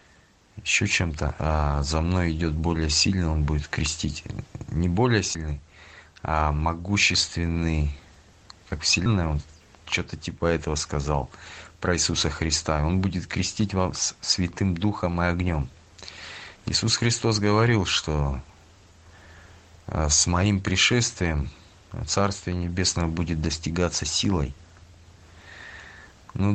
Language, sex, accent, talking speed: Russian, male, native, 105 wpm